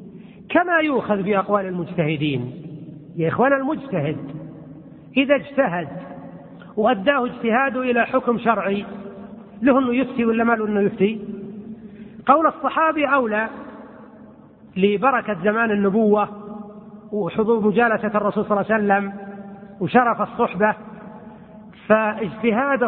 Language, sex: Arabic, male